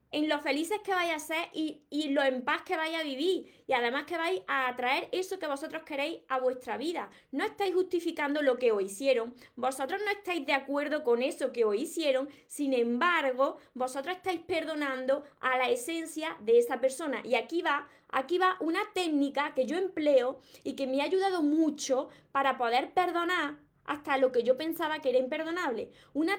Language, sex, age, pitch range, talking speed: Spanish, female, 20-39, 265-330 Hz, 195 wpm